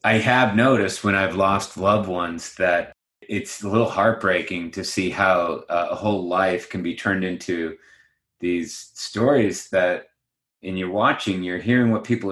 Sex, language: male, English